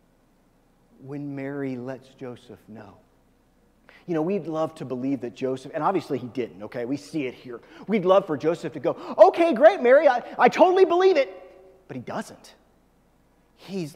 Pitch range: 145-225 Hz